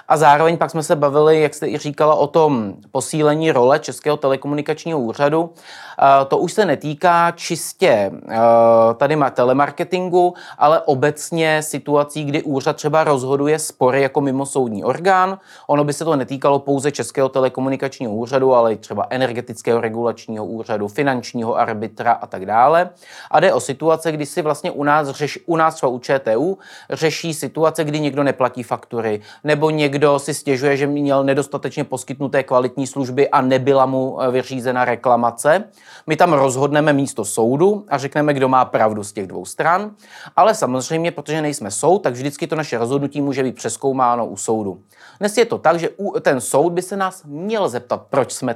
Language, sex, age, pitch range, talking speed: Czech, male, 30-49, 130-160 Hz, 170 wpm